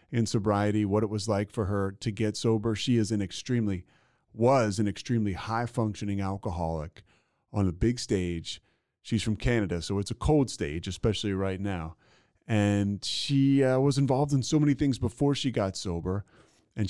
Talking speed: 175 wpm